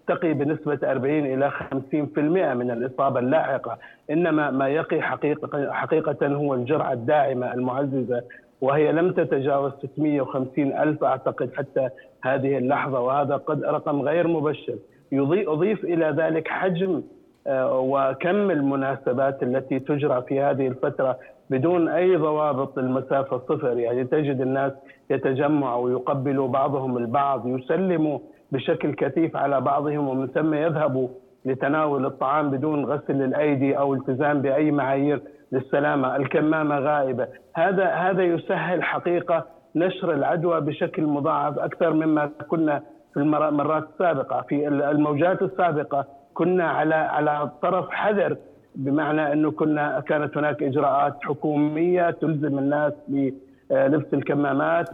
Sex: male